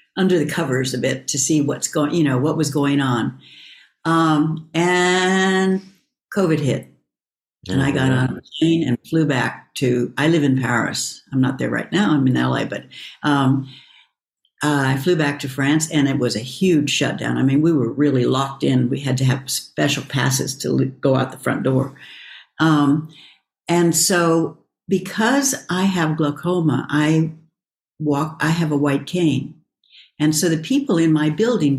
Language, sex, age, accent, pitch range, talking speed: English, female, 60-79, American, 140-180 Hz, 180 wpm